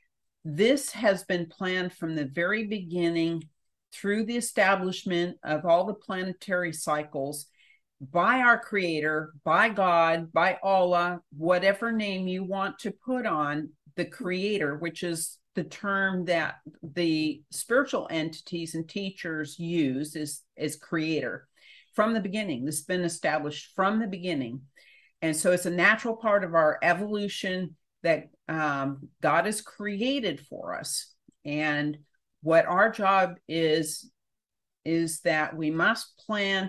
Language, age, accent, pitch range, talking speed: English, 50-69, American, 155-200 Hz, 135 wpm